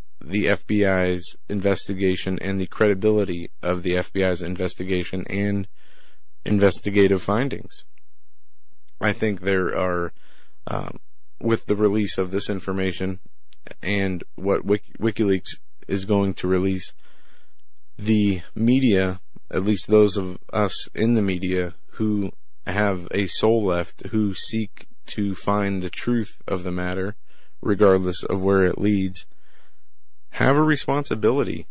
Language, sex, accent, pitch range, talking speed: English, male, American, 95-105 Hz, 120 wpm